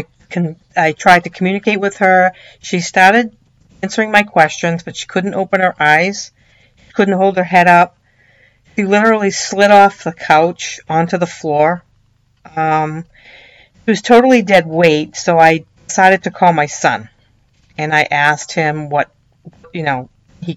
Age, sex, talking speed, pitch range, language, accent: 50-69, female, 150 wpm, 150-180 Hz, English, American